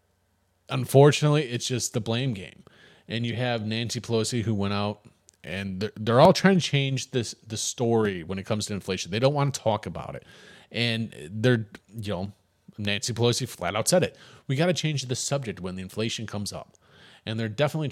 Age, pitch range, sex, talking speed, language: 30-49, 100-130 Hz, male, 200 wpm, English